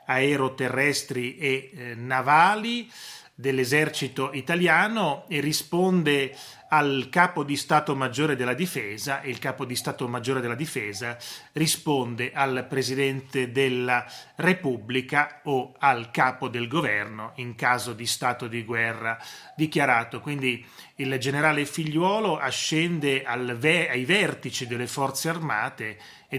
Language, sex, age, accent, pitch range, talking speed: Italian, male, 30-49, native, 130-155 Hz, 115 wpm